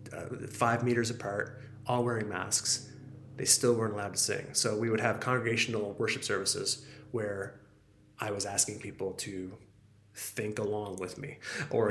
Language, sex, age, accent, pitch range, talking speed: English, male, 30-49, American, 105-130 Hz, 155 wpm